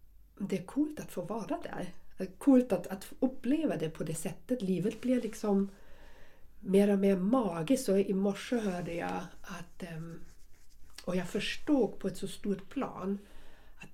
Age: 50-69